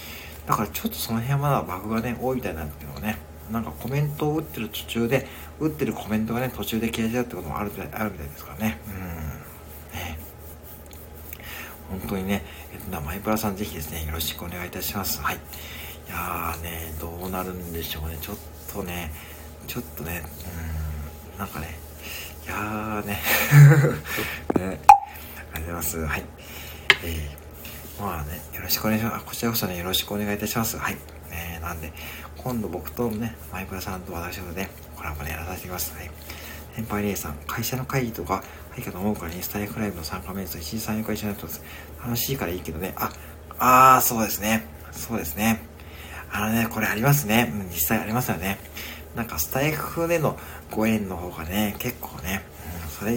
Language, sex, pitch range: Japanese, male, 75-110 Hz